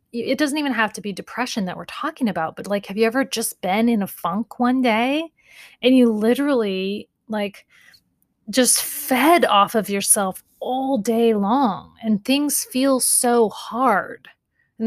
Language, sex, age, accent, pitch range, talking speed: English, female, 30-49, American, 200-245 Hz, 165 wpm